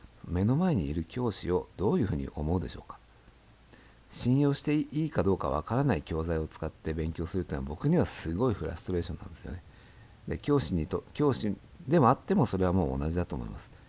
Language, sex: Japanese, male